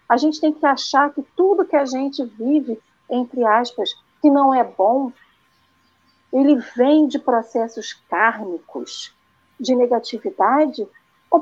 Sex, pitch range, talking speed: female, 255-330 Hz, 130 wpm